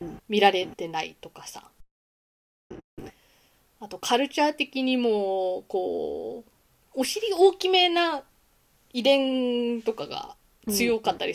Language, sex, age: Japanese, female, 20-39